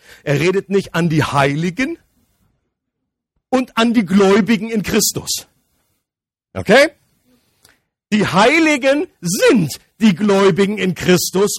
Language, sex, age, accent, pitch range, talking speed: German, male, 50-69, German, 165-220 Hz, 105 wpm